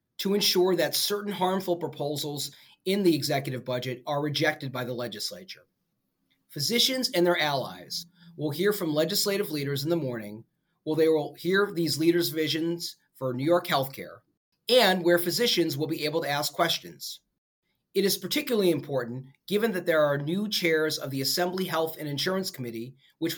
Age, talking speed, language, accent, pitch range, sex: 30-49, 165 wpm, English, American, 140-180 Hz, male